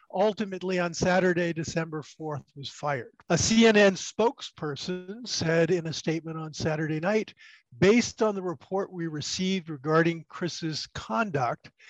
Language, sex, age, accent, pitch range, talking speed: English, male, 50-69, American, 155-190 Hz, 130 wpm